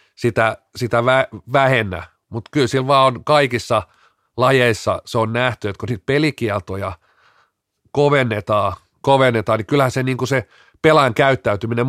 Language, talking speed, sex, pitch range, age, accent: Finnish, 135 wpm, male, 105-130 Hz, 40-59, native